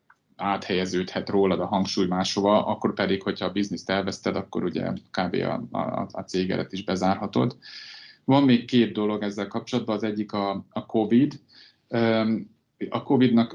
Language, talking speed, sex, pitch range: Hungarian, 140 wpm, male, 95-110 Hz